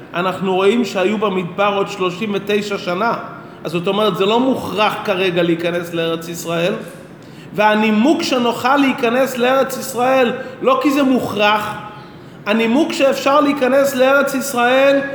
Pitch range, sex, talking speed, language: 195-260 Hz, male, 105 wpm, Hebrew